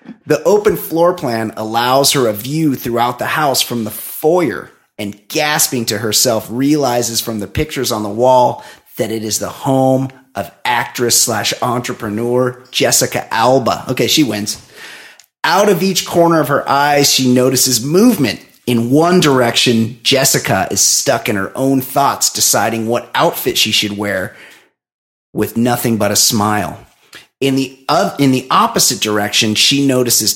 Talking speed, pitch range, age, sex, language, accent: 155 wpm, 115-145 Hz, 30-49, male, English, American